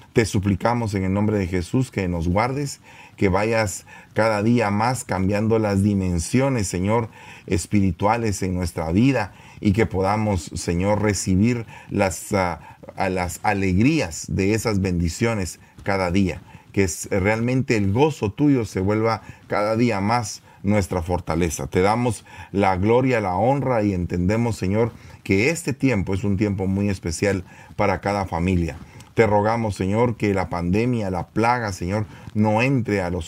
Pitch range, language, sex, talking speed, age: 95-120 Hz, English, male, 150 wpm, 40-59